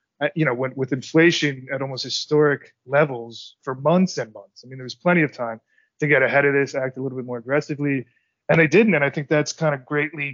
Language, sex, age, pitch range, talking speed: English, male, 30-49, 130-150 Hz, 230 wpm